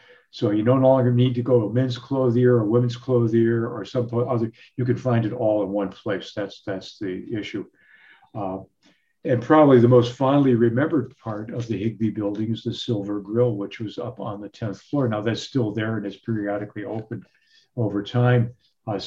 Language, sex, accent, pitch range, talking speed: English, male, American, 105-125 Hz, 195 wpm